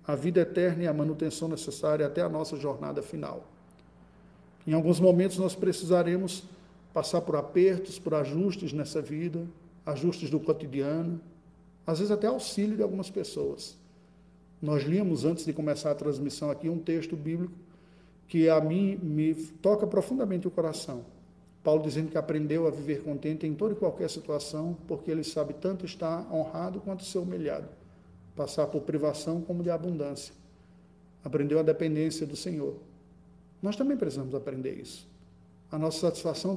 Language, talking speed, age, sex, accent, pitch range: Portuguese, 155 wpm, 50-69, male, Brazilian, 145-180 Hz